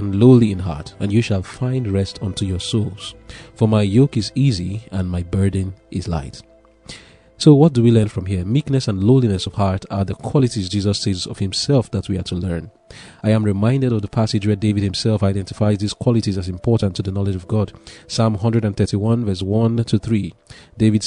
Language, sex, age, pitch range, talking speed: English, male, 30-49, 95-120 Hz, 200 wpm